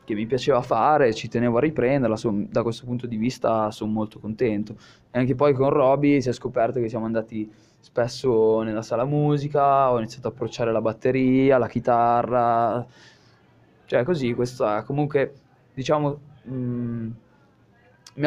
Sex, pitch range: male, 115-140 Hz